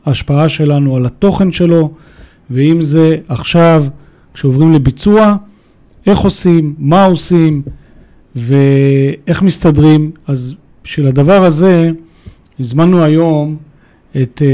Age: 40-59